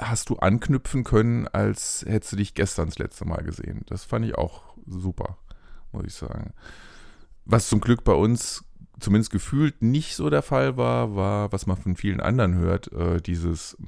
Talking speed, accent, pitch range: 175 wpm, German, 90-115 Hz